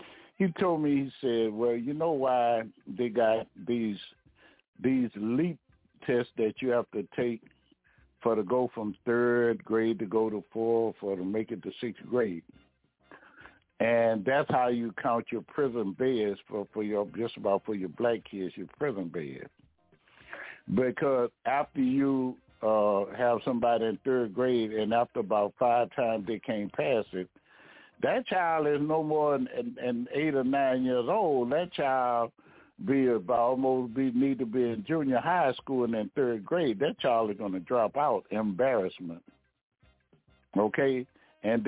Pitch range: 110-130 Hz